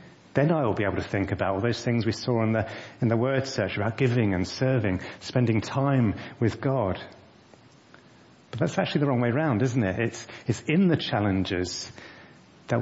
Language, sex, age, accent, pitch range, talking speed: English, male, 30-49, British, 100-125 Hz, 195 wpm